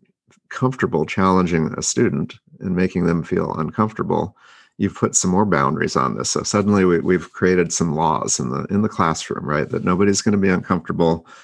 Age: 40-59